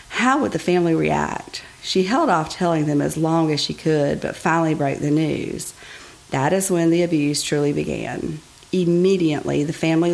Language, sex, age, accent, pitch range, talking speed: English, female, 40-59, American, 150-175 Hz, 180 wpm